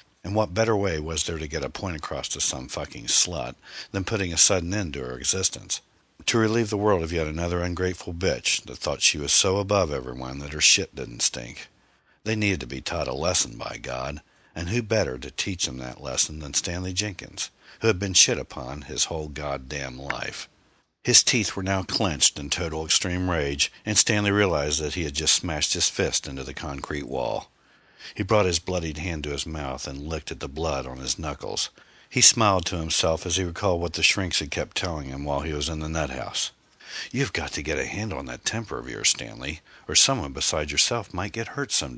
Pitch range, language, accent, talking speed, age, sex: 75-100 Hz, English, American, 220 wpm, 60-79, male